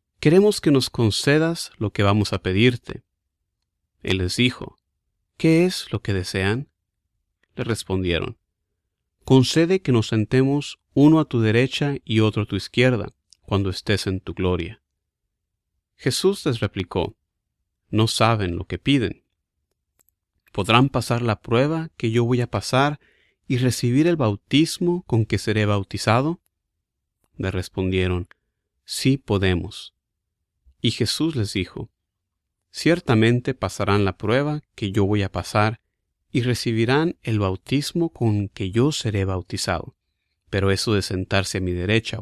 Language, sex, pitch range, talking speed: Spanish, male, 95-130 Hz, 135 wpm